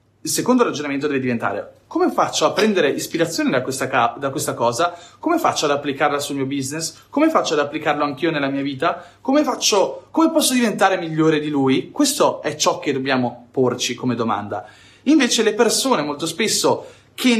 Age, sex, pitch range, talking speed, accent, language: 30-49, male, 135-215 Hz, 170 wpm, native, Italian